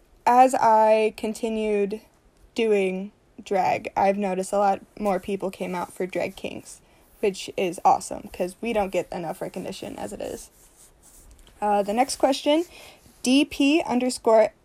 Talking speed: 140 wpm